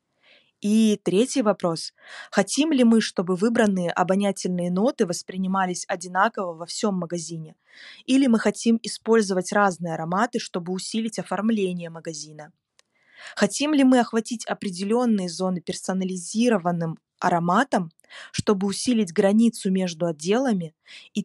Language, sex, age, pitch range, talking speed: Russian, female, 20-39, 180-225 Hz, 110 wpm